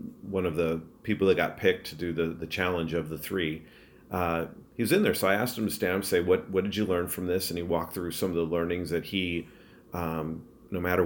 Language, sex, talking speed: English, male, 265 wpm